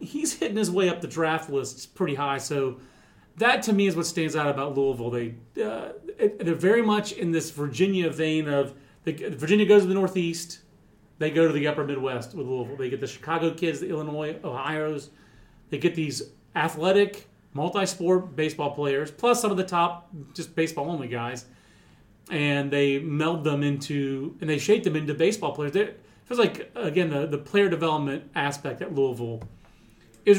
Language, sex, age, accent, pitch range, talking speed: English, male, 30-49, American, 140-180 Hz, 190 wpm